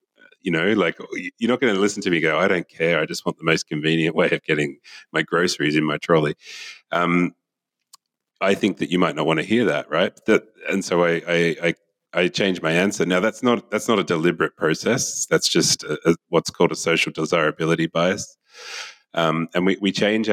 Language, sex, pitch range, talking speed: English, male, 80-95 Hz, 215 wpm